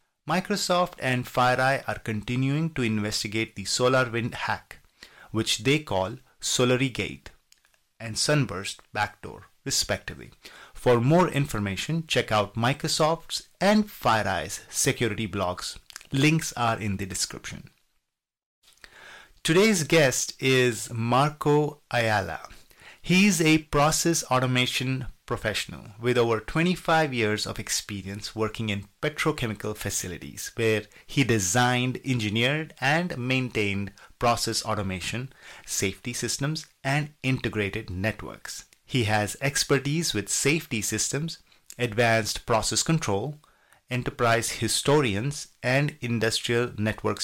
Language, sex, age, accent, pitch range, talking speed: English, male, 30-49, Indian, 105-145 Hz, 105 wpm